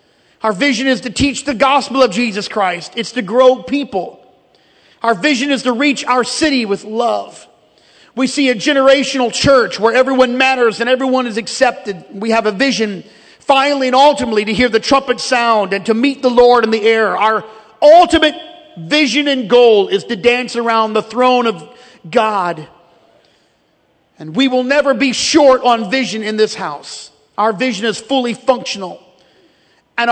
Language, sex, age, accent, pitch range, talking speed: English, male, 40-59, American, 220-270 Hz, 170 wpm